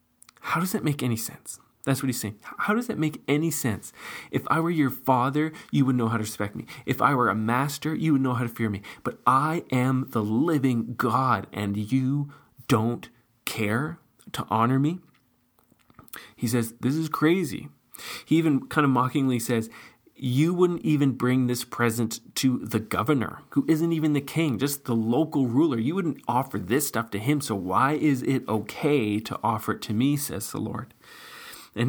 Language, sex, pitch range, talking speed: English, male, 110-140 Hz, 195 wpm